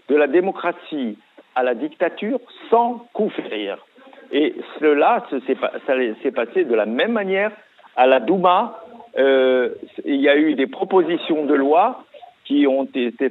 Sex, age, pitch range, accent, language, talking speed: male, 50-69, 135-215 Hz, French, French, 145 wpm